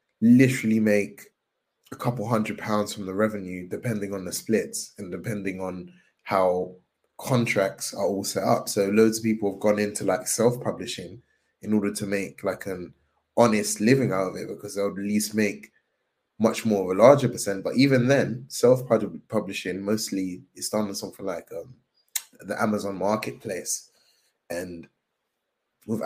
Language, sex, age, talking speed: English, male, 20-39, 160 wpm